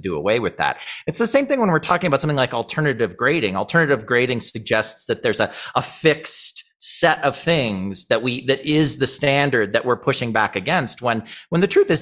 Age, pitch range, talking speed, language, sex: 30-49, 120-180 Hz, 215 wpm, English, male